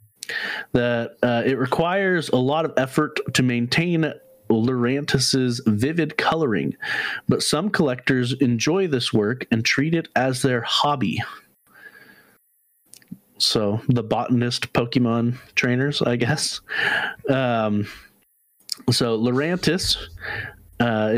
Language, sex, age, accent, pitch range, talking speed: English, male, 30-49, American, 115-135 Hz, 100 wpm